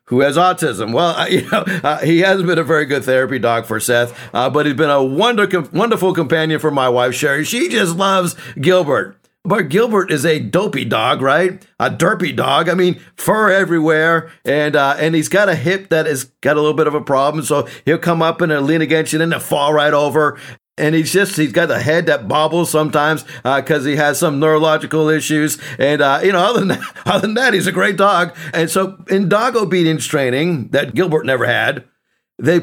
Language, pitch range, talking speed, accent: English, 150-185 Hz, 215 wpm, American